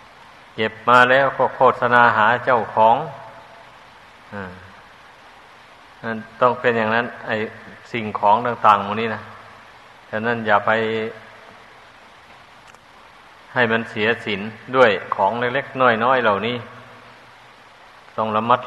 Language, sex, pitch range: Thai, male, 110-120 Hz